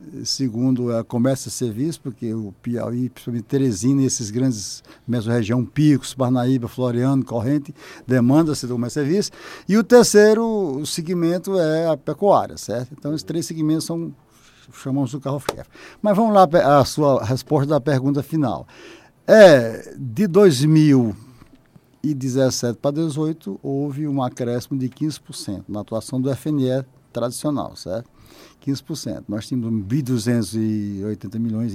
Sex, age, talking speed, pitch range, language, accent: male, 60-79, 135 wpm, 125-160 Hz, Portuguese, Brazilian